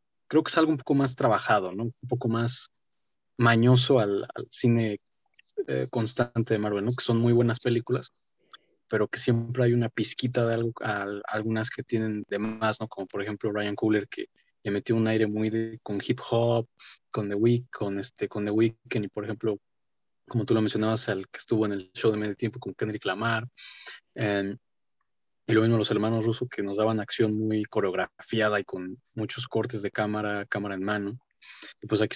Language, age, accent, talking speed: Spanish, 30-49, Mexican, 205 wpm